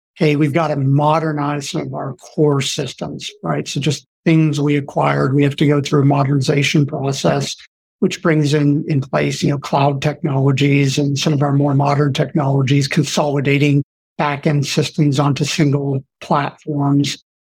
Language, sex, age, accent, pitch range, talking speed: English, male, 50-69, American, 145-160 Hz, 160 wpm